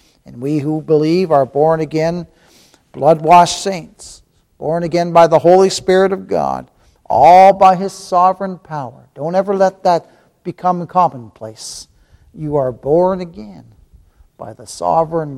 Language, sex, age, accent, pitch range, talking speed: English, male, 60-79, American, 135-180 Hz, 135 wpm